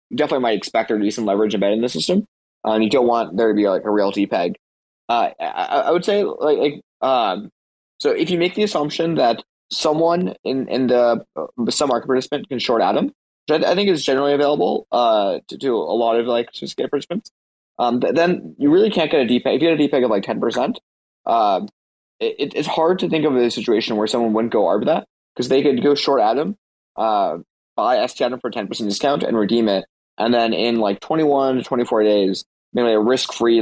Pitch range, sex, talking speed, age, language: 110-160 Hz, male, 220 wpm, 20-39, English